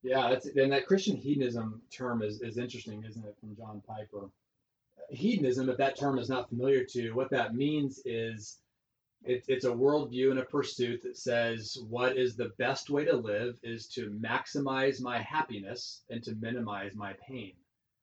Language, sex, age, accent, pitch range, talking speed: English, male, 30-49, American, 115-135 Hz, 180 wpm